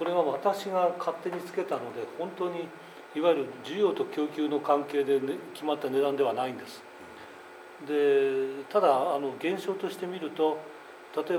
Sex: male